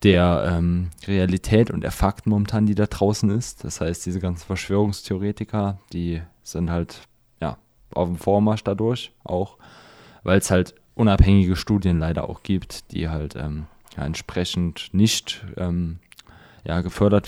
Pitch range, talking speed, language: 90-105 Hz, 135 wpm, German